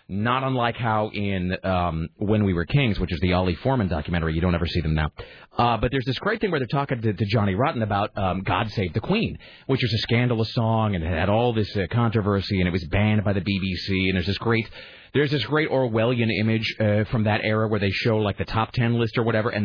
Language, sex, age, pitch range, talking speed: English, male, 30-49, 95-125 Hz, 255 wpm